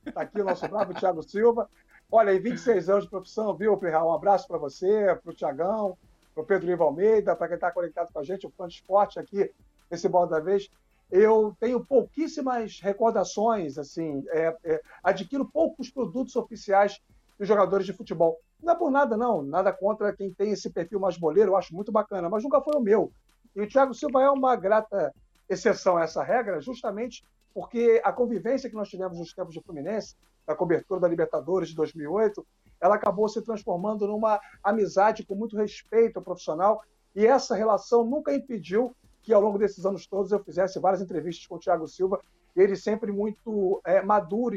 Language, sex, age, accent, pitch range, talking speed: Portuguese, male, 50-69, Brazilian, 185-225 Hz, 195 wpm